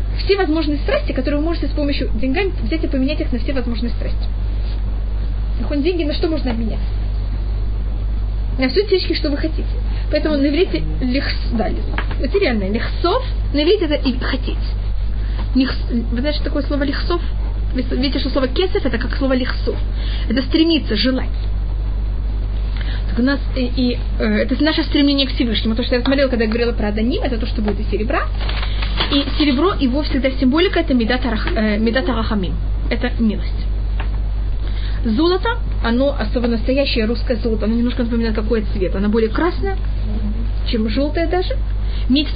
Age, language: 20-39, Russian